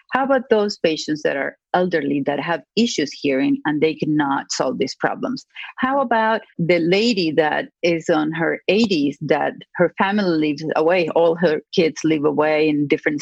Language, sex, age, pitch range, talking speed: English, female, 40-59, 155-225 Hz, 170 wpm